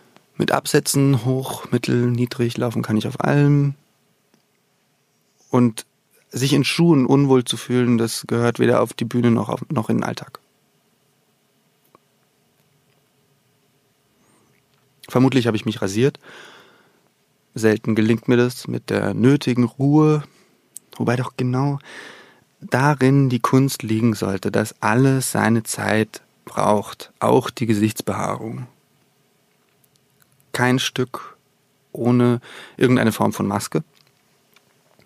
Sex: male